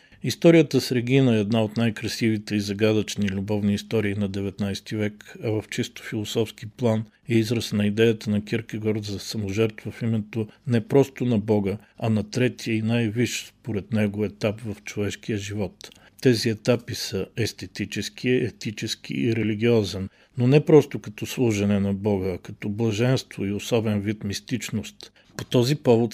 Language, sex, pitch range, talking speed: Bulgarian, male, 105-115 Hz, 160 wpm